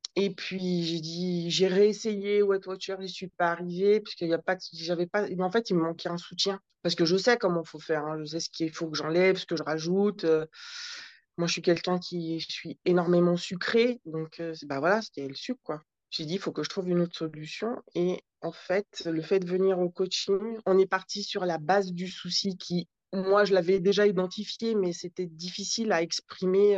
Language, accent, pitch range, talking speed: French, French, 165-200 Hz, 230 wpm